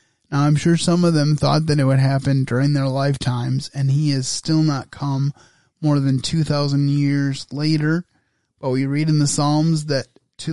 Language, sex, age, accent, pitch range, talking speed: English, male, 20-39, American, 135-155 Hz, 195 wpm